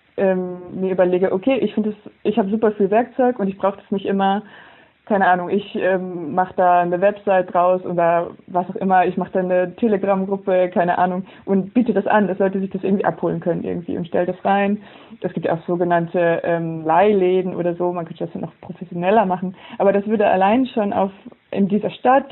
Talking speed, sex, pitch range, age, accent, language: 210 wpm, female, 180-205 Hz, 20-39, German, German